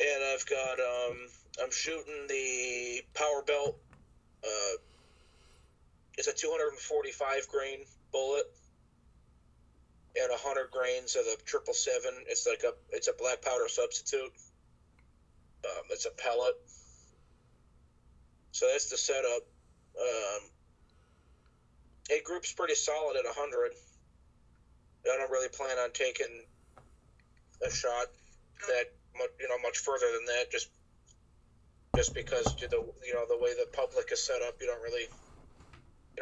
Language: English